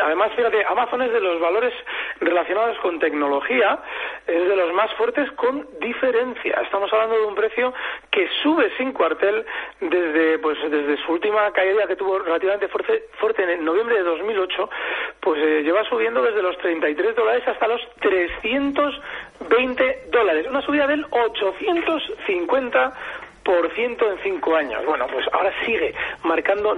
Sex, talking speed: male, 150 wpm